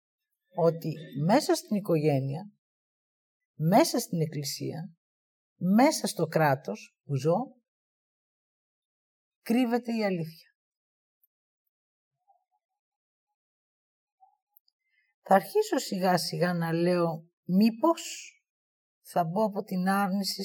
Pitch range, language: 165-260 Hz, Greek